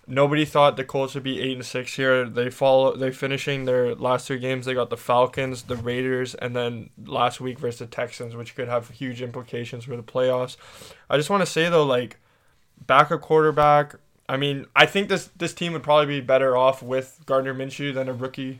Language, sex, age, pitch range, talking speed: English, male, 20-39, 125-140 Hz, 215 wpm